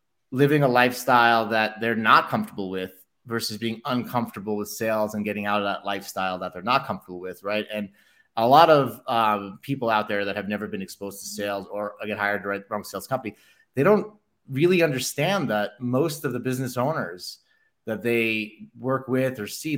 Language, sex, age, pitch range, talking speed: English, male, 30-49, 105-135 Hz, 195 wpm